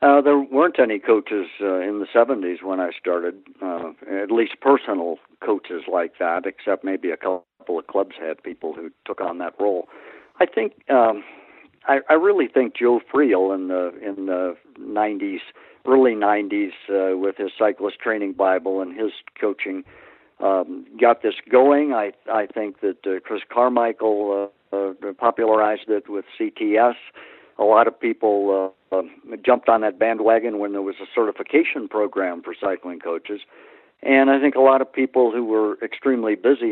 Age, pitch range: 60-79, 95-120 Hz